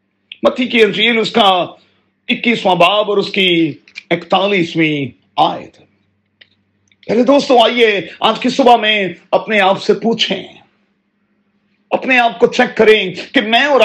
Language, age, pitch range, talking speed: Urdu, 40-59, 165-225 Hz, 130 wpm